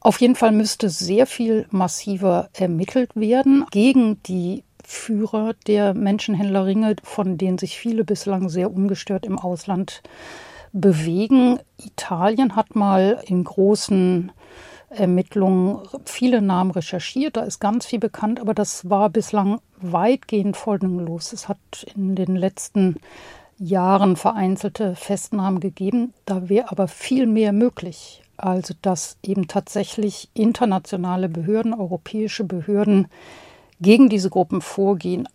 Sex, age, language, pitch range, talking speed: female, 60-79, German, 185-215 Hz, 120 wpm